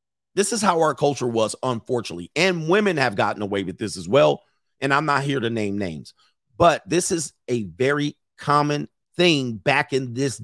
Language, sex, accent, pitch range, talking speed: English, male, American, 110-160 Hz, 190 wpm